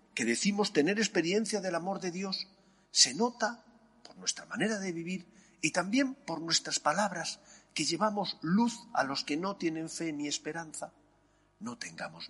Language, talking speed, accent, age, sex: Spanish, 160 wpm, Spanish, 40-59, male